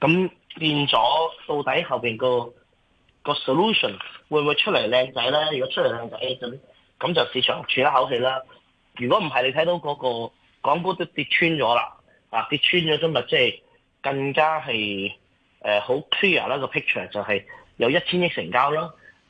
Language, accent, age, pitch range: Chinese, native, 20-39, 125-175 Hz